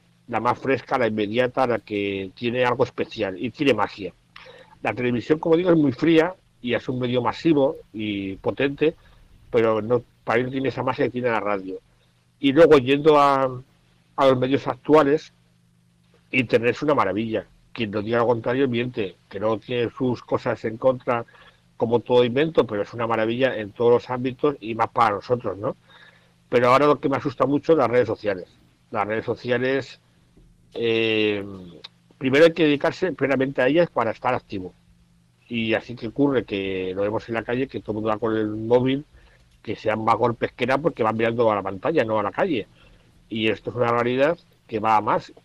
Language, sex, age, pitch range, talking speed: Spanish, male, 60-79, 100-135 Hz, 195 wpm